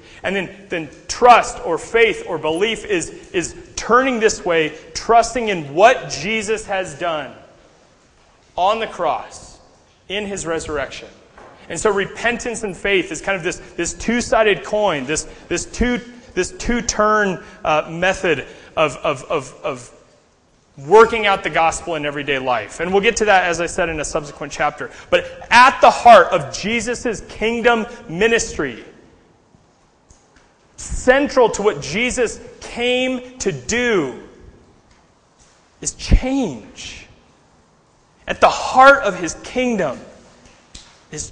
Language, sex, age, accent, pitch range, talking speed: English, male, 30-49, American, 175-235 Hz, 130 wpm